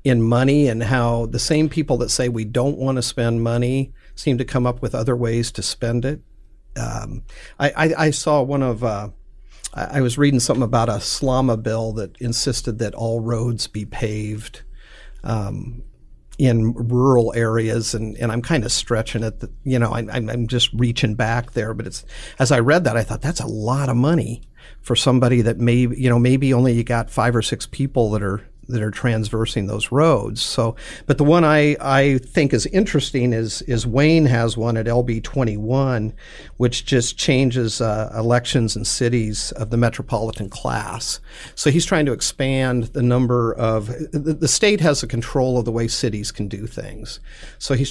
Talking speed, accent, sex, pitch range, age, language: 190 wpm, American, male, 115-130 Hz, 50-69, English